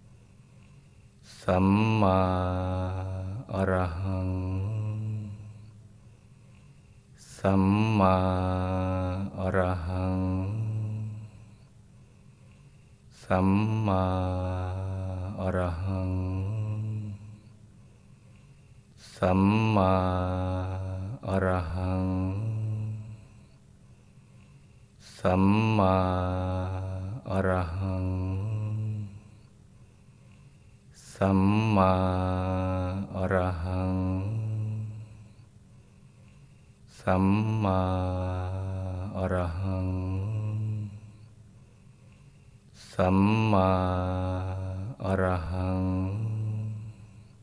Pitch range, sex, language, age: 95-110 Hz, male, Thai, 20-39